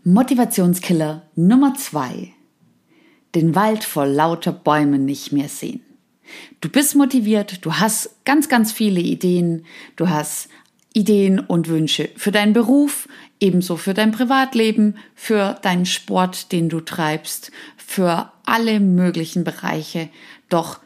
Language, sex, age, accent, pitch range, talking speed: German, female, 50-69, German, 155-220 Hz, 125 wpm